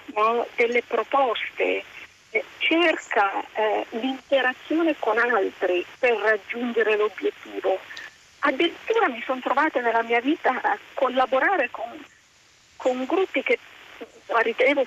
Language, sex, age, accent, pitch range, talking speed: Italian, female, 40-59, native, 240-400 Hz, 100 wpm